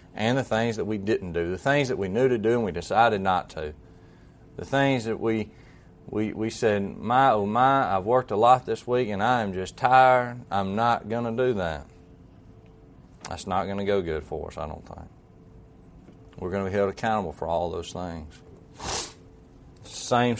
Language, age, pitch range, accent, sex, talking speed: English, 40-59, 100-125 Hz, American, male, 200 wpm